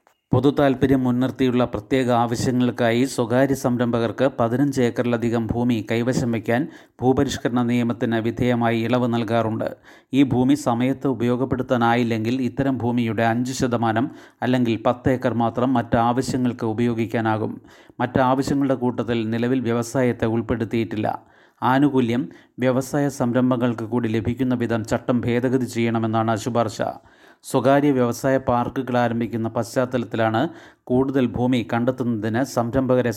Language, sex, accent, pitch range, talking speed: Malayalam, male, native, 120-130 Hz, 100 wpm